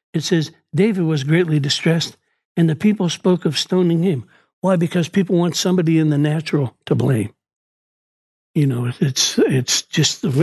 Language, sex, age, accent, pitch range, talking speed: English, male, 60-79, American, 150-180 Hz, 165 wpm